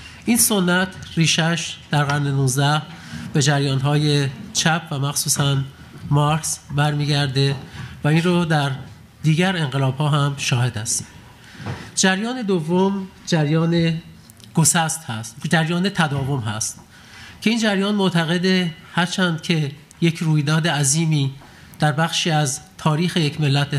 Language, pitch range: Persian, 145-170 Hz